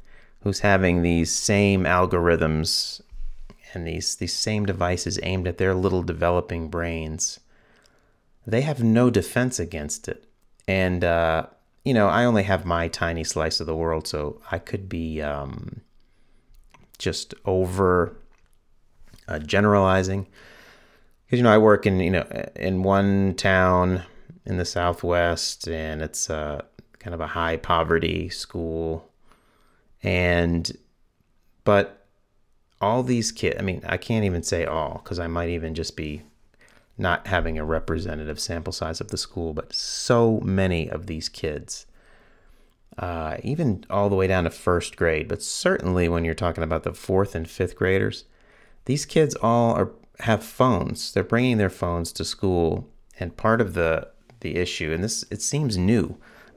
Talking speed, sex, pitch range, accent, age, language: 155 wpm, male, 80-100 Hz, American, 30-49, English